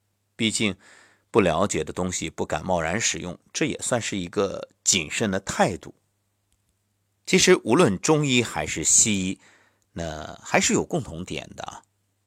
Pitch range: 95-120 Hz